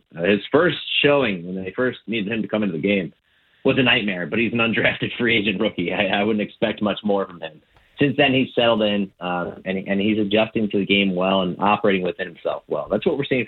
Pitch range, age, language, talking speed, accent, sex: 85-110 Hz, 30-49, English, 240 wpm, American, male